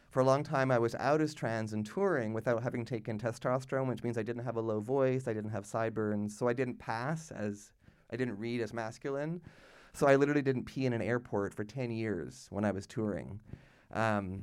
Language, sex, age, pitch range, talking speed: English, male, 30-49, 110-130 Hz, 220 wpm